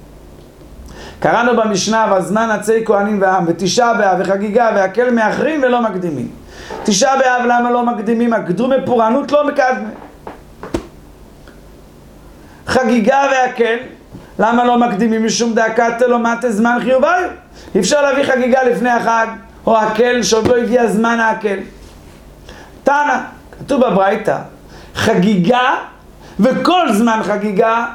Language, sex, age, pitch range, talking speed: Hebrew, male, 50-69, 195-250 Hz, 100 wpm